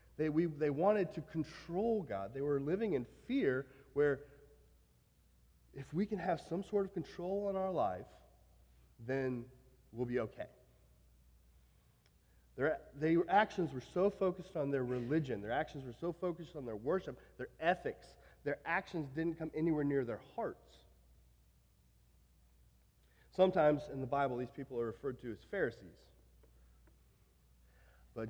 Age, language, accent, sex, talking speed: 30-49, English, American, male, 140 wpm